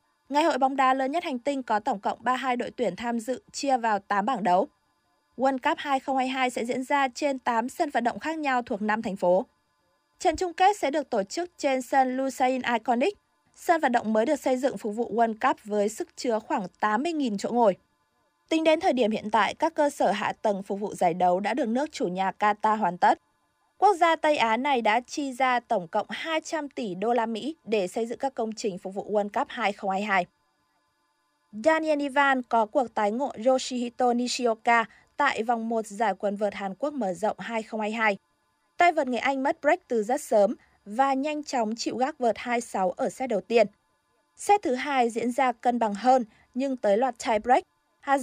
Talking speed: 210 wpm